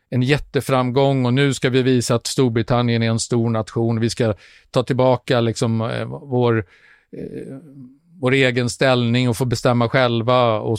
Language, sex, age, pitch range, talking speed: Swedish, male, 50-69, 120-150 Hz, 145 wpm